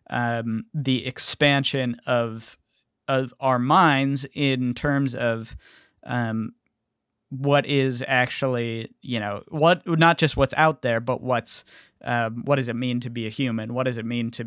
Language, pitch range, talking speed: English, 120-140 Hz, 160 wpm